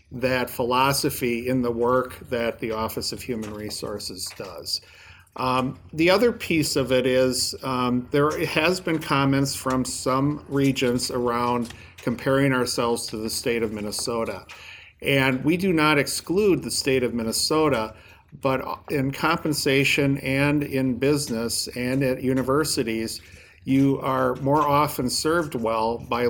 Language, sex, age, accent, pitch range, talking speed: English, male, 50-69, American, 115-140 Hz, 135 wpm